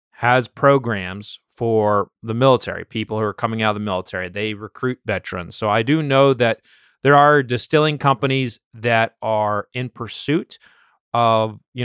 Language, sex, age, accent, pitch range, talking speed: English, male, 30-49, American, 105-130 Hz, 155 wpm